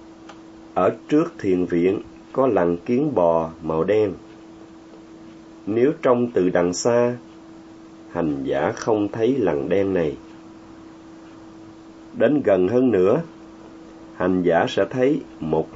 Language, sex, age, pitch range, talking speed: Vietnamese, male, 30-49, 90-110 Hz, 120 wpm